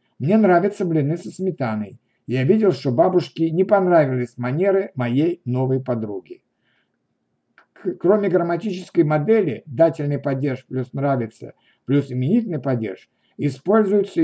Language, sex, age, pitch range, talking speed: Ukrainian, male, 60-79, 135-175 Hz, 110 wpm